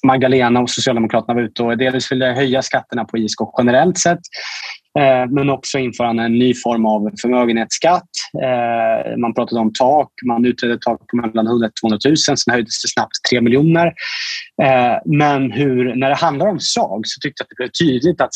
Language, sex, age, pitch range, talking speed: Swedish, male, 20-39, 125-175 Hz, 185 wpm